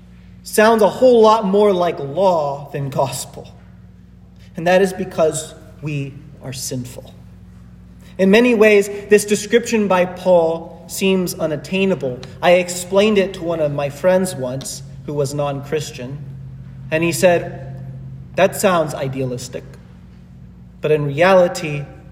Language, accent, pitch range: English, American, 130-185 Hz